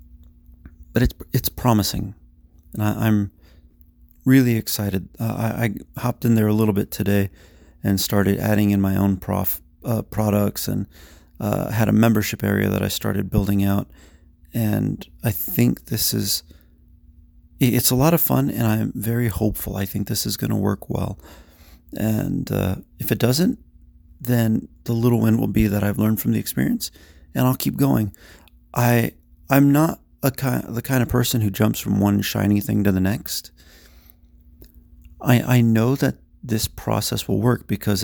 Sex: male